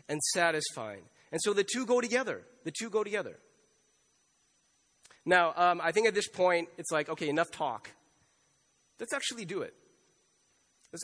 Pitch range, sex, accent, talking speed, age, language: 160-200 Hz, male, American, 160 wpm, 30-49, English